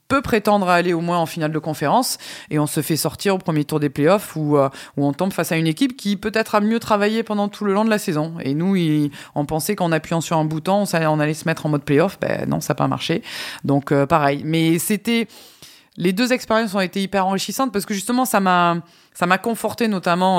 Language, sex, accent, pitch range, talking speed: French, female, French, 150-195 Hz, 255 wpm